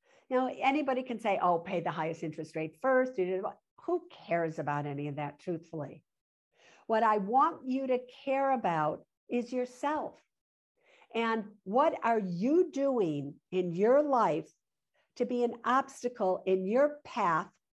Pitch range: 195-270 Hz